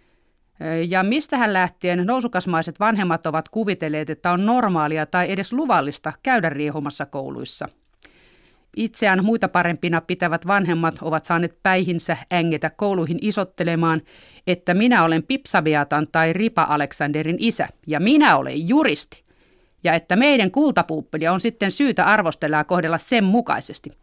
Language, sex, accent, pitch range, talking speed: Finnish, female, native, 160-210 Hz, 125 wpm